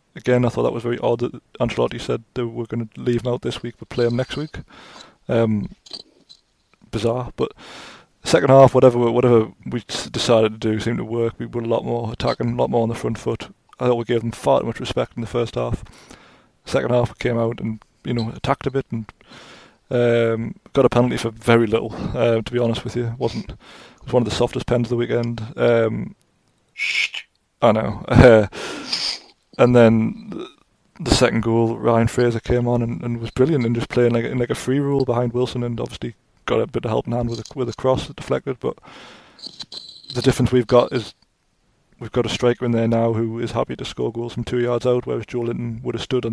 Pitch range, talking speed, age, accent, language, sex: 115-125 Hz, 225 wpm, 20-39, British, English, male